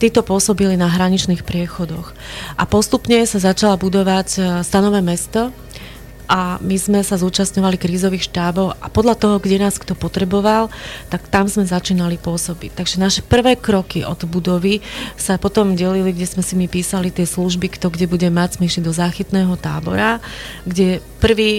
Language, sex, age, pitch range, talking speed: Slovak, female, 30-49, 175-195 Hz, 160 wpm